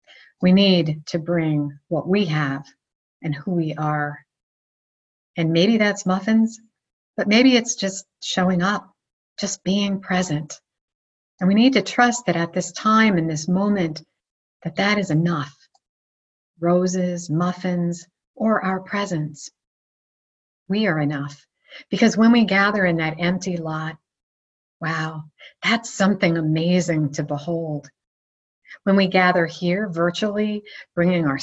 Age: 50-69